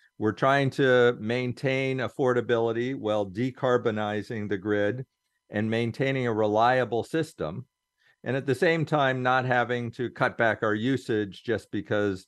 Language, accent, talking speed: English, American, 135 wpm